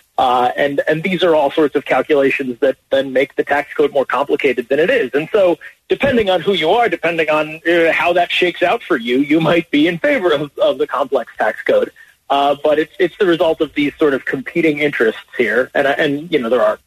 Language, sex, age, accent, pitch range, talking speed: English, male, 30-49, American, 135-185 Hz, 240 wpm